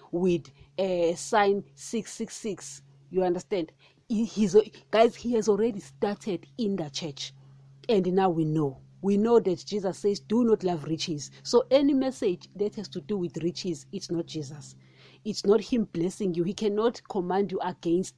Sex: female